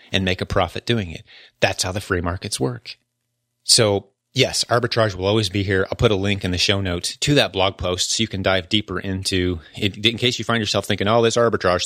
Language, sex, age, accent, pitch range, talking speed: English, male, 30-49, American, 95-110 Hz, 240 wpm